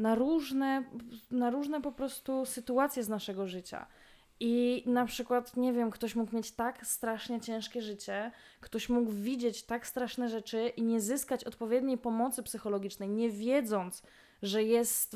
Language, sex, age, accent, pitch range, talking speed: Polish, female, 20-39, native, 225-265 Hz, 145 wpm